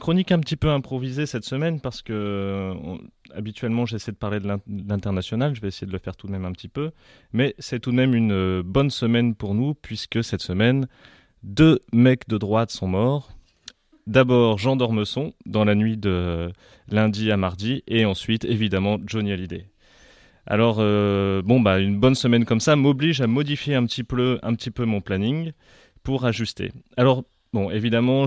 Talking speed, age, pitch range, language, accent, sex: 180 wpm, 30-49, 100-125 Hz, French, French, male